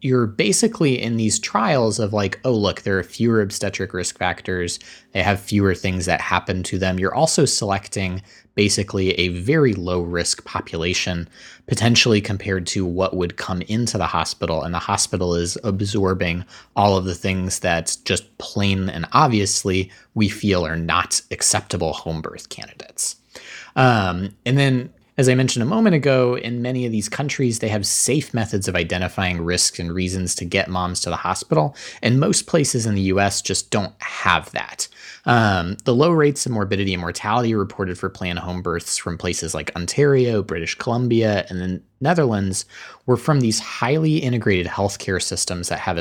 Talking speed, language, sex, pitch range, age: 175 wpm, English, male, 90-120 Hz, 20-39